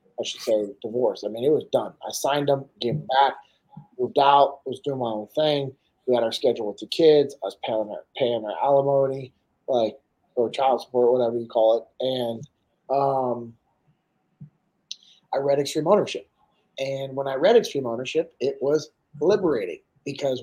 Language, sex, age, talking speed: English, male, 30-49, 175 wpm